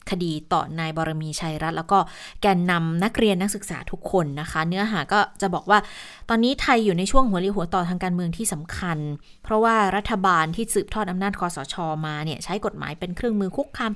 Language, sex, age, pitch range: Thai, female, 20-39, 175-220 Hz